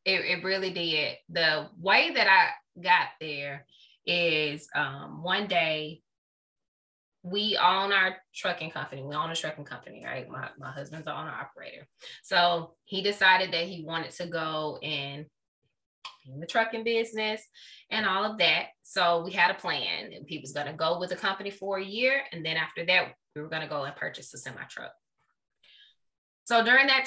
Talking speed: 175 wpm